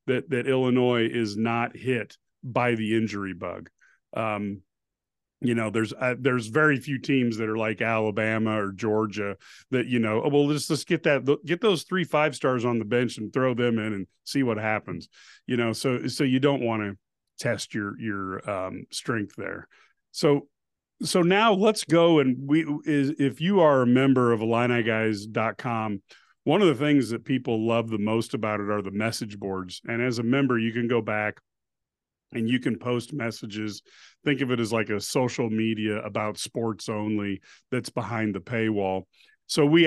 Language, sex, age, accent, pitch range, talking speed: English, male, 40-59, American, 110-135 Hz, 190 wpm